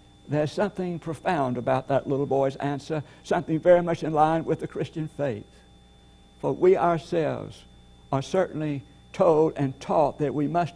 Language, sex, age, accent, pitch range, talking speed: English, male, 60-79, American, 130-175 Hz, 155 wpm